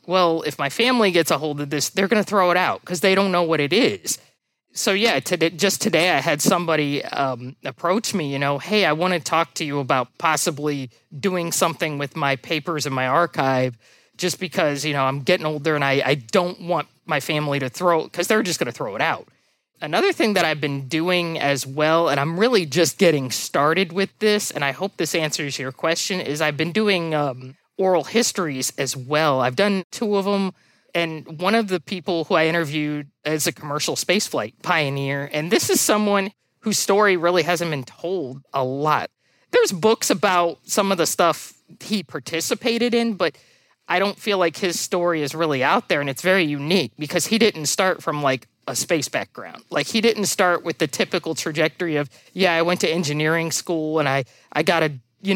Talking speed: 210 wpm